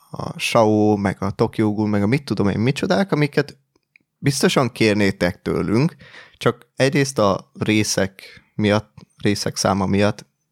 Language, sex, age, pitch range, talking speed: Hungarian, male, 20-39, 100-120 Hz, 130 wpm